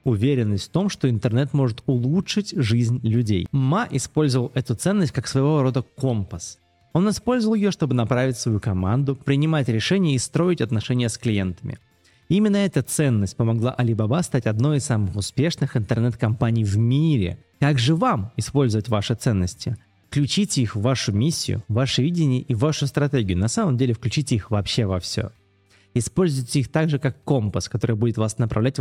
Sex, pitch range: male, 110-145 Hz